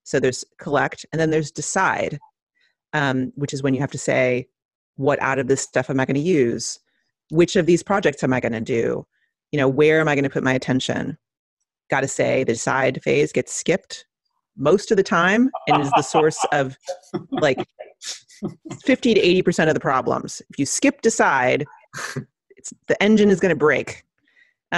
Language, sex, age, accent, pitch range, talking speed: English, female, 30-49, American, 135-200 Hz, 190 wpm